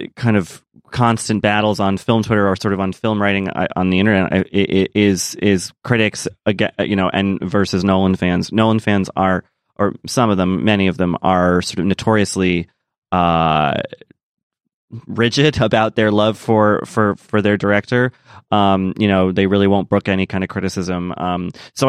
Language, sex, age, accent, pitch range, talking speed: English, male, 30-49, American, 95-110 Hz, 175 wpm